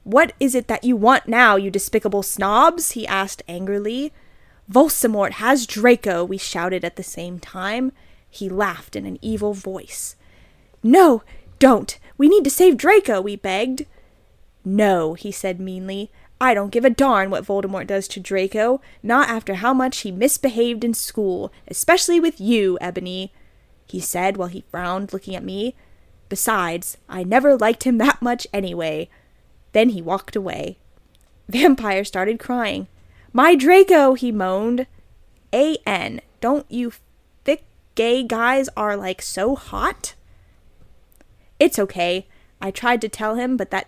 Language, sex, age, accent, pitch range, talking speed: English, female, 20-39, American, 190-255 Hz, 150 wpm